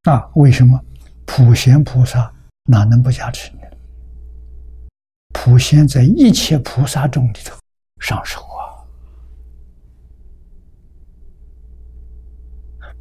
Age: 60-79